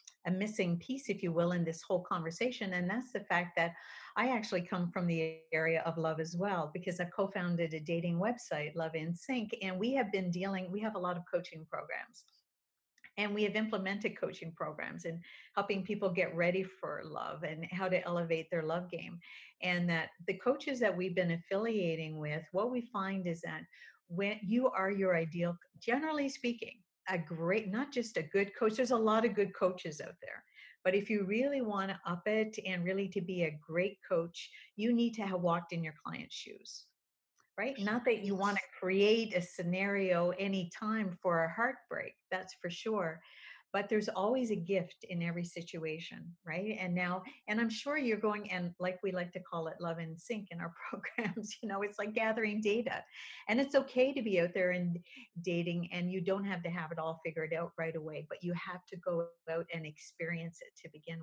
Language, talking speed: English, 205 wpm